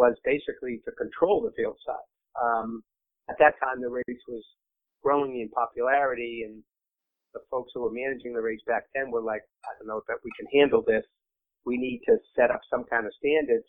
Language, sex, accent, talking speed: English, male, American, 205 wpm